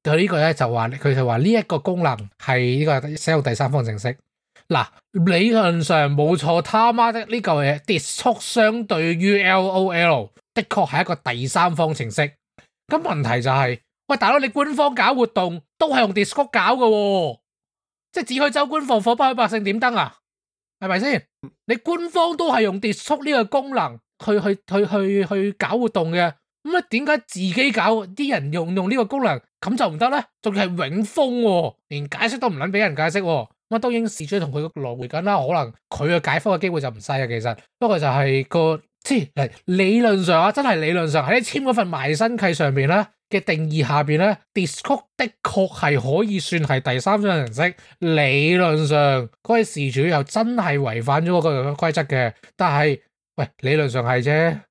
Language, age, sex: English, 20-39, male